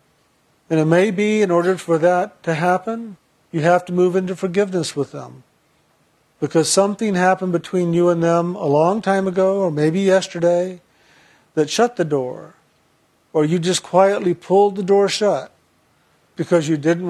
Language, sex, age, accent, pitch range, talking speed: English, male, 50-69, American, 155-185 Hz, 165 wpm